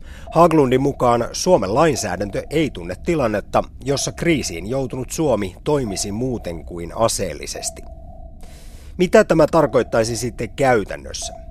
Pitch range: 95-150 Hz